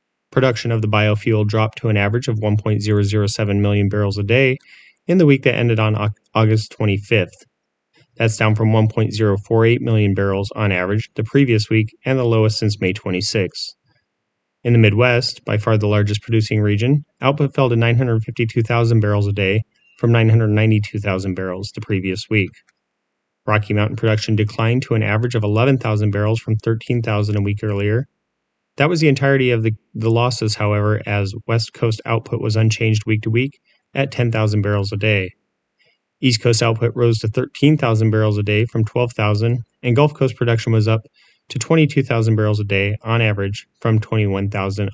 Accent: American